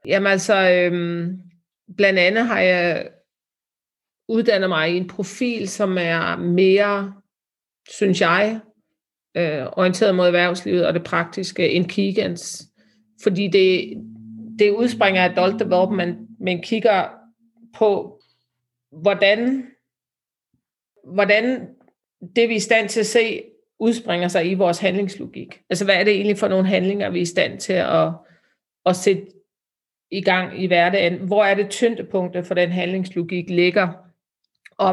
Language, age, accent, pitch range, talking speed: Danish, 40-59, native, 180-210 Hz, 140 wpm